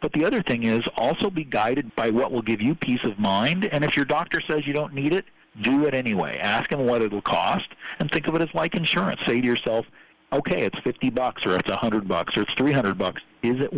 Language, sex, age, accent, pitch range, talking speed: English, male, 50-69, American, 115-160 Hz, 255 wpm